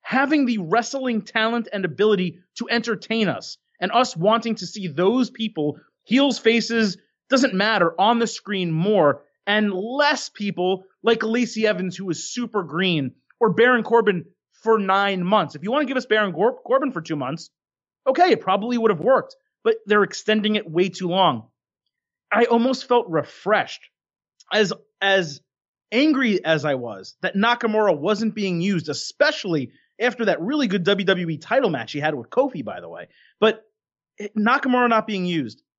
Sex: male